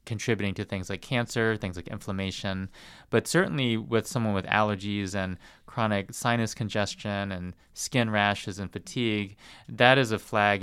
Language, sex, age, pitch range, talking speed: English, male, 20-39, 95-110 Hz, 150 wpm